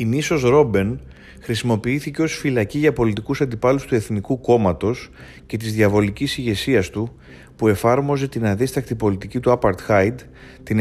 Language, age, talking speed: Greek, 30-49, 145 wpm